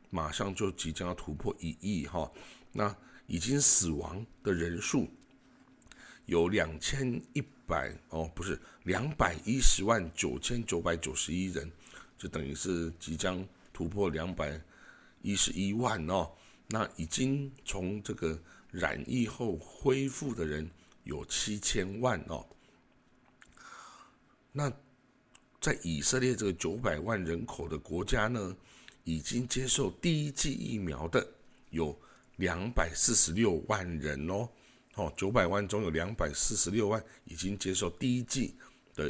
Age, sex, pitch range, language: 60-79, male, 85-115 Hz, Chinese